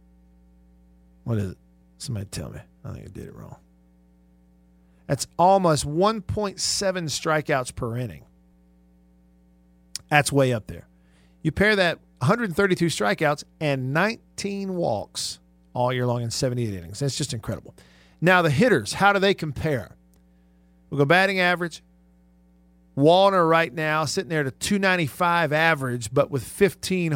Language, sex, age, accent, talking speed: English, male, 50-69, American, 135 wpm